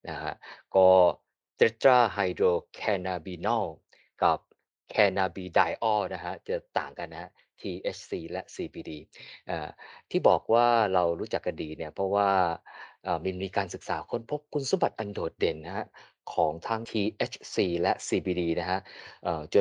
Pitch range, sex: 85-105 Hz, male